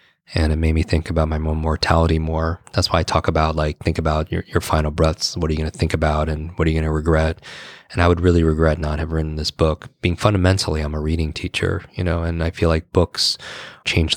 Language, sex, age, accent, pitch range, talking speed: English, male, 20-39, American, 80-90 Hz, 240 wpm